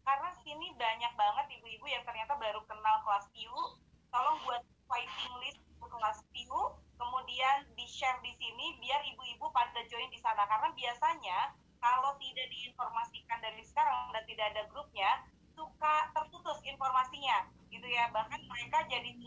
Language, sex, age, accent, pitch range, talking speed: Indonesian, female, 20-39, native, 235-310 Hz, 150 wpm